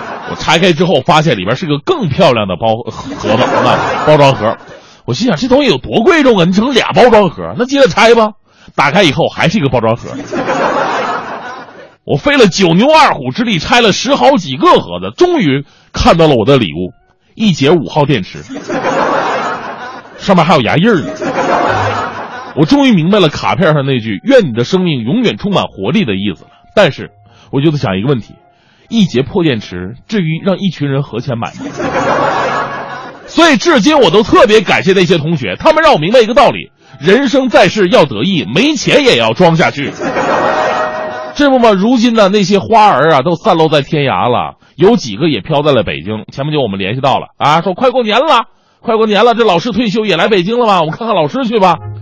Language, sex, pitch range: Chinese, male, 140-230 Hz